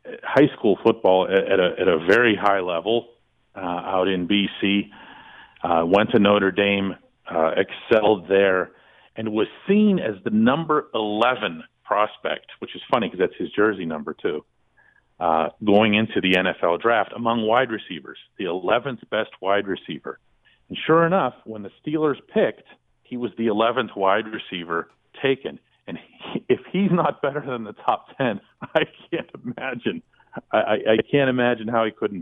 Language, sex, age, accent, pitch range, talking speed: English, male, 40-59, American, 105-140 Hz, 160 wpm